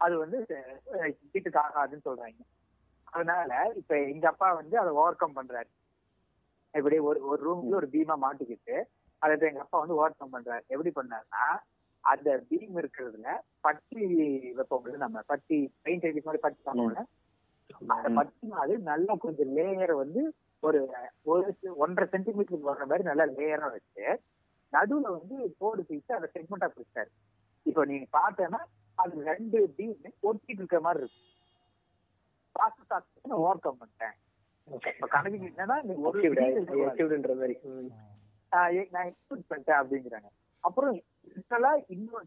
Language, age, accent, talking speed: Tamil, 30-49, native, 125 wpm